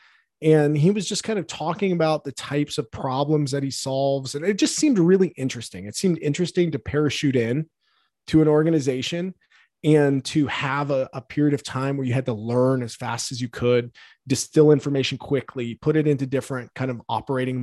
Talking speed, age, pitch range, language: 195 wpm, 20-39, 130-160 Hz, English